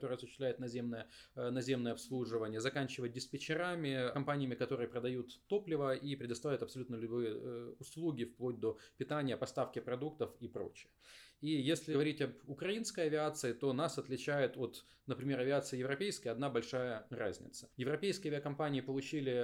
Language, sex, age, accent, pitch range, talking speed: Ukrainian, male, 20-39, native, 120-145 Hz, 130 wpm